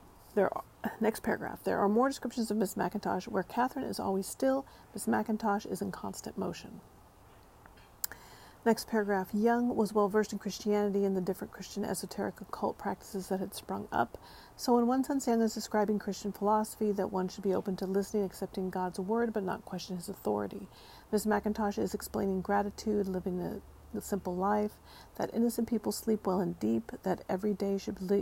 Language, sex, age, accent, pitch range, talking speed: English, female, 40-59, American, 195-220 Hz, 185 wpm